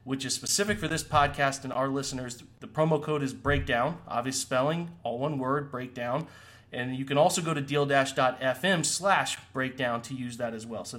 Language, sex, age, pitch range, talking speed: English, male, 30-49, 120-145 Hz, 195 wpm